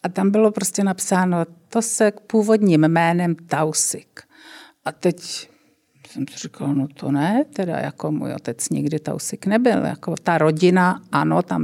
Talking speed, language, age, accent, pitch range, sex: 155 wpm, Czech, 50-69, native, 155-195 Hz, female